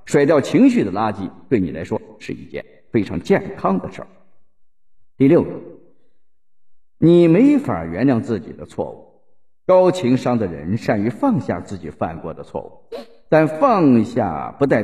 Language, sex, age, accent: Chinese, male, 50-69, native